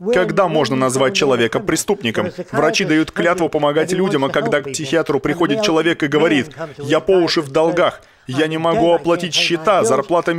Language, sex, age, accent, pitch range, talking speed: Russian, male, 20-39, native, 140-180 Hz, 170 wpm